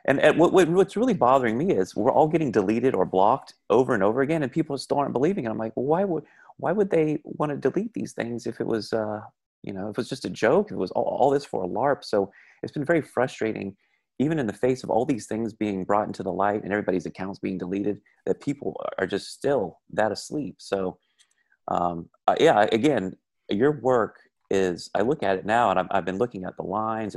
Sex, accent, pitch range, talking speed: male, American, 90-120 Hz, 240 wpm